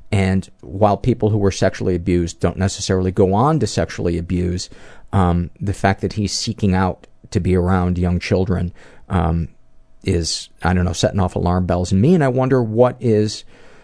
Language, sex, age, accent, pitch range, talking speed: English, male, 40-59, American, 90-105 Hz, 180 wpm